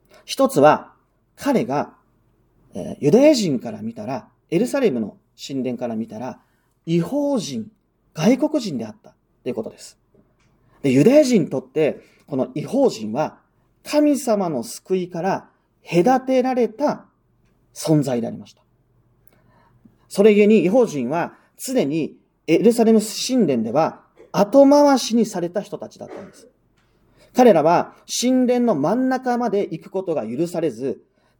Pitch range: 150-240 Hz